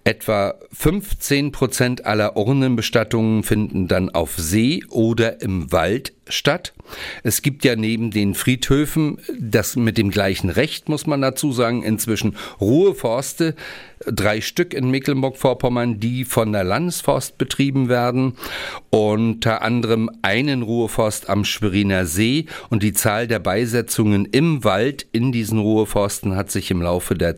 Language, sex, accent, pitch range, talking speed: German, male, German, 95-130 Hz, 135 wpm